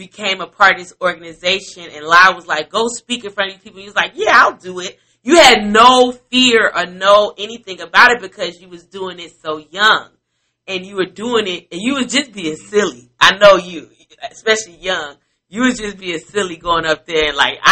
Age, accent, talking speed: 30-49, American, 225 wpm